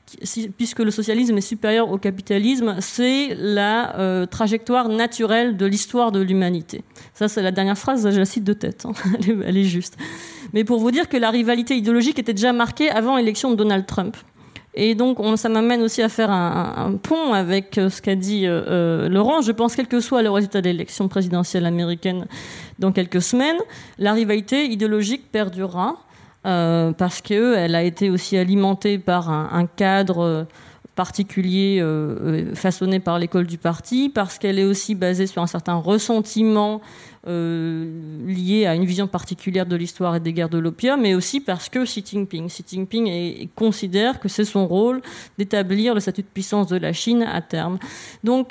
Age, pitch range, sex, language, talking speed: 40-59, 185-230 Hz, female, French, 180 wpm